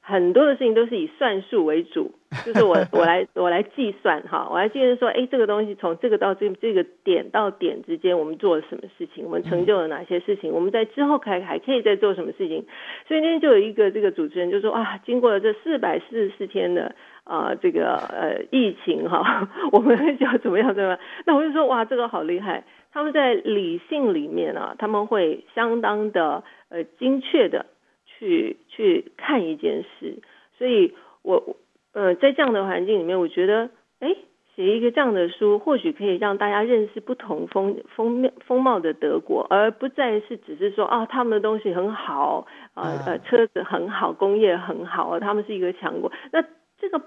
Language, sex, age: Chinese, female, 40-59